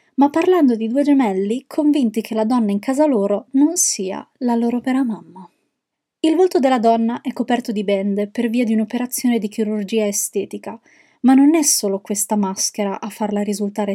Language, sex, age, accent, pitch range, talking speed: Italian, female, 20-39, native, 210-260 Hz, 180 wpm